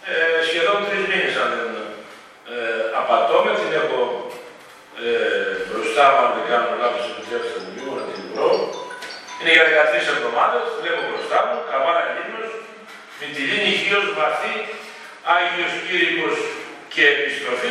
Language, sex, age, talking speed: Greek, male, 40-59, 140 wpm